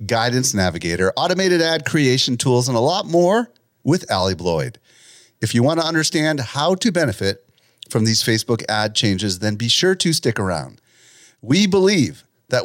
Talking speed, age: 165 wpm, 40-59